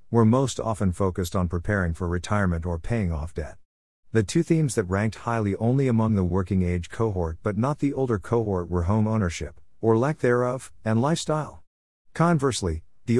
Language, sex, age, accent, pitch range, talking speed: English, male, 50-69, American, 90-115 Hz, 175 wpm